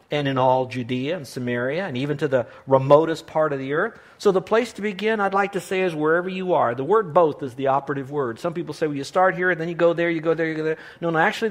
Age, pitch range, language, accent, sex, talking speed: 50-69, 140-200 Hz, English, American, male, 290 wpm